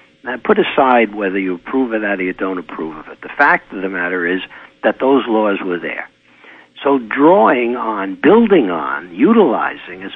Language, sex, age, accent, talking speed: English, male, 60-79, American, 190 wpm